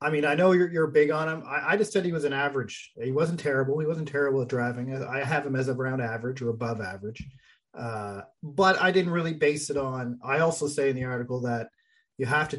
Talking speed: 250 wpm